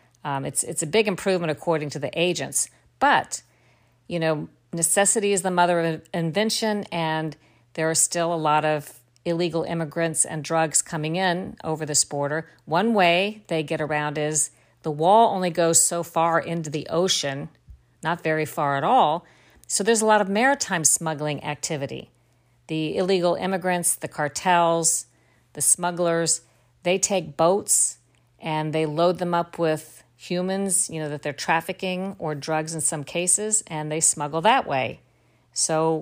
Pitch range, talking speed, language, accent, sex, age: 150-180 Hz, 160 wpm, English, American, female, 50-69